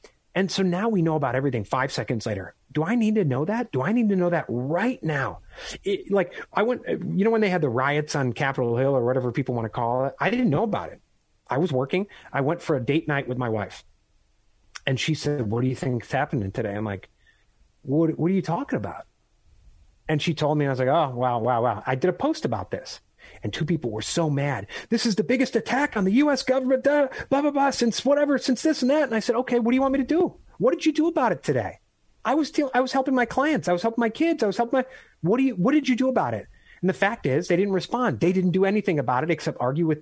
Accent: American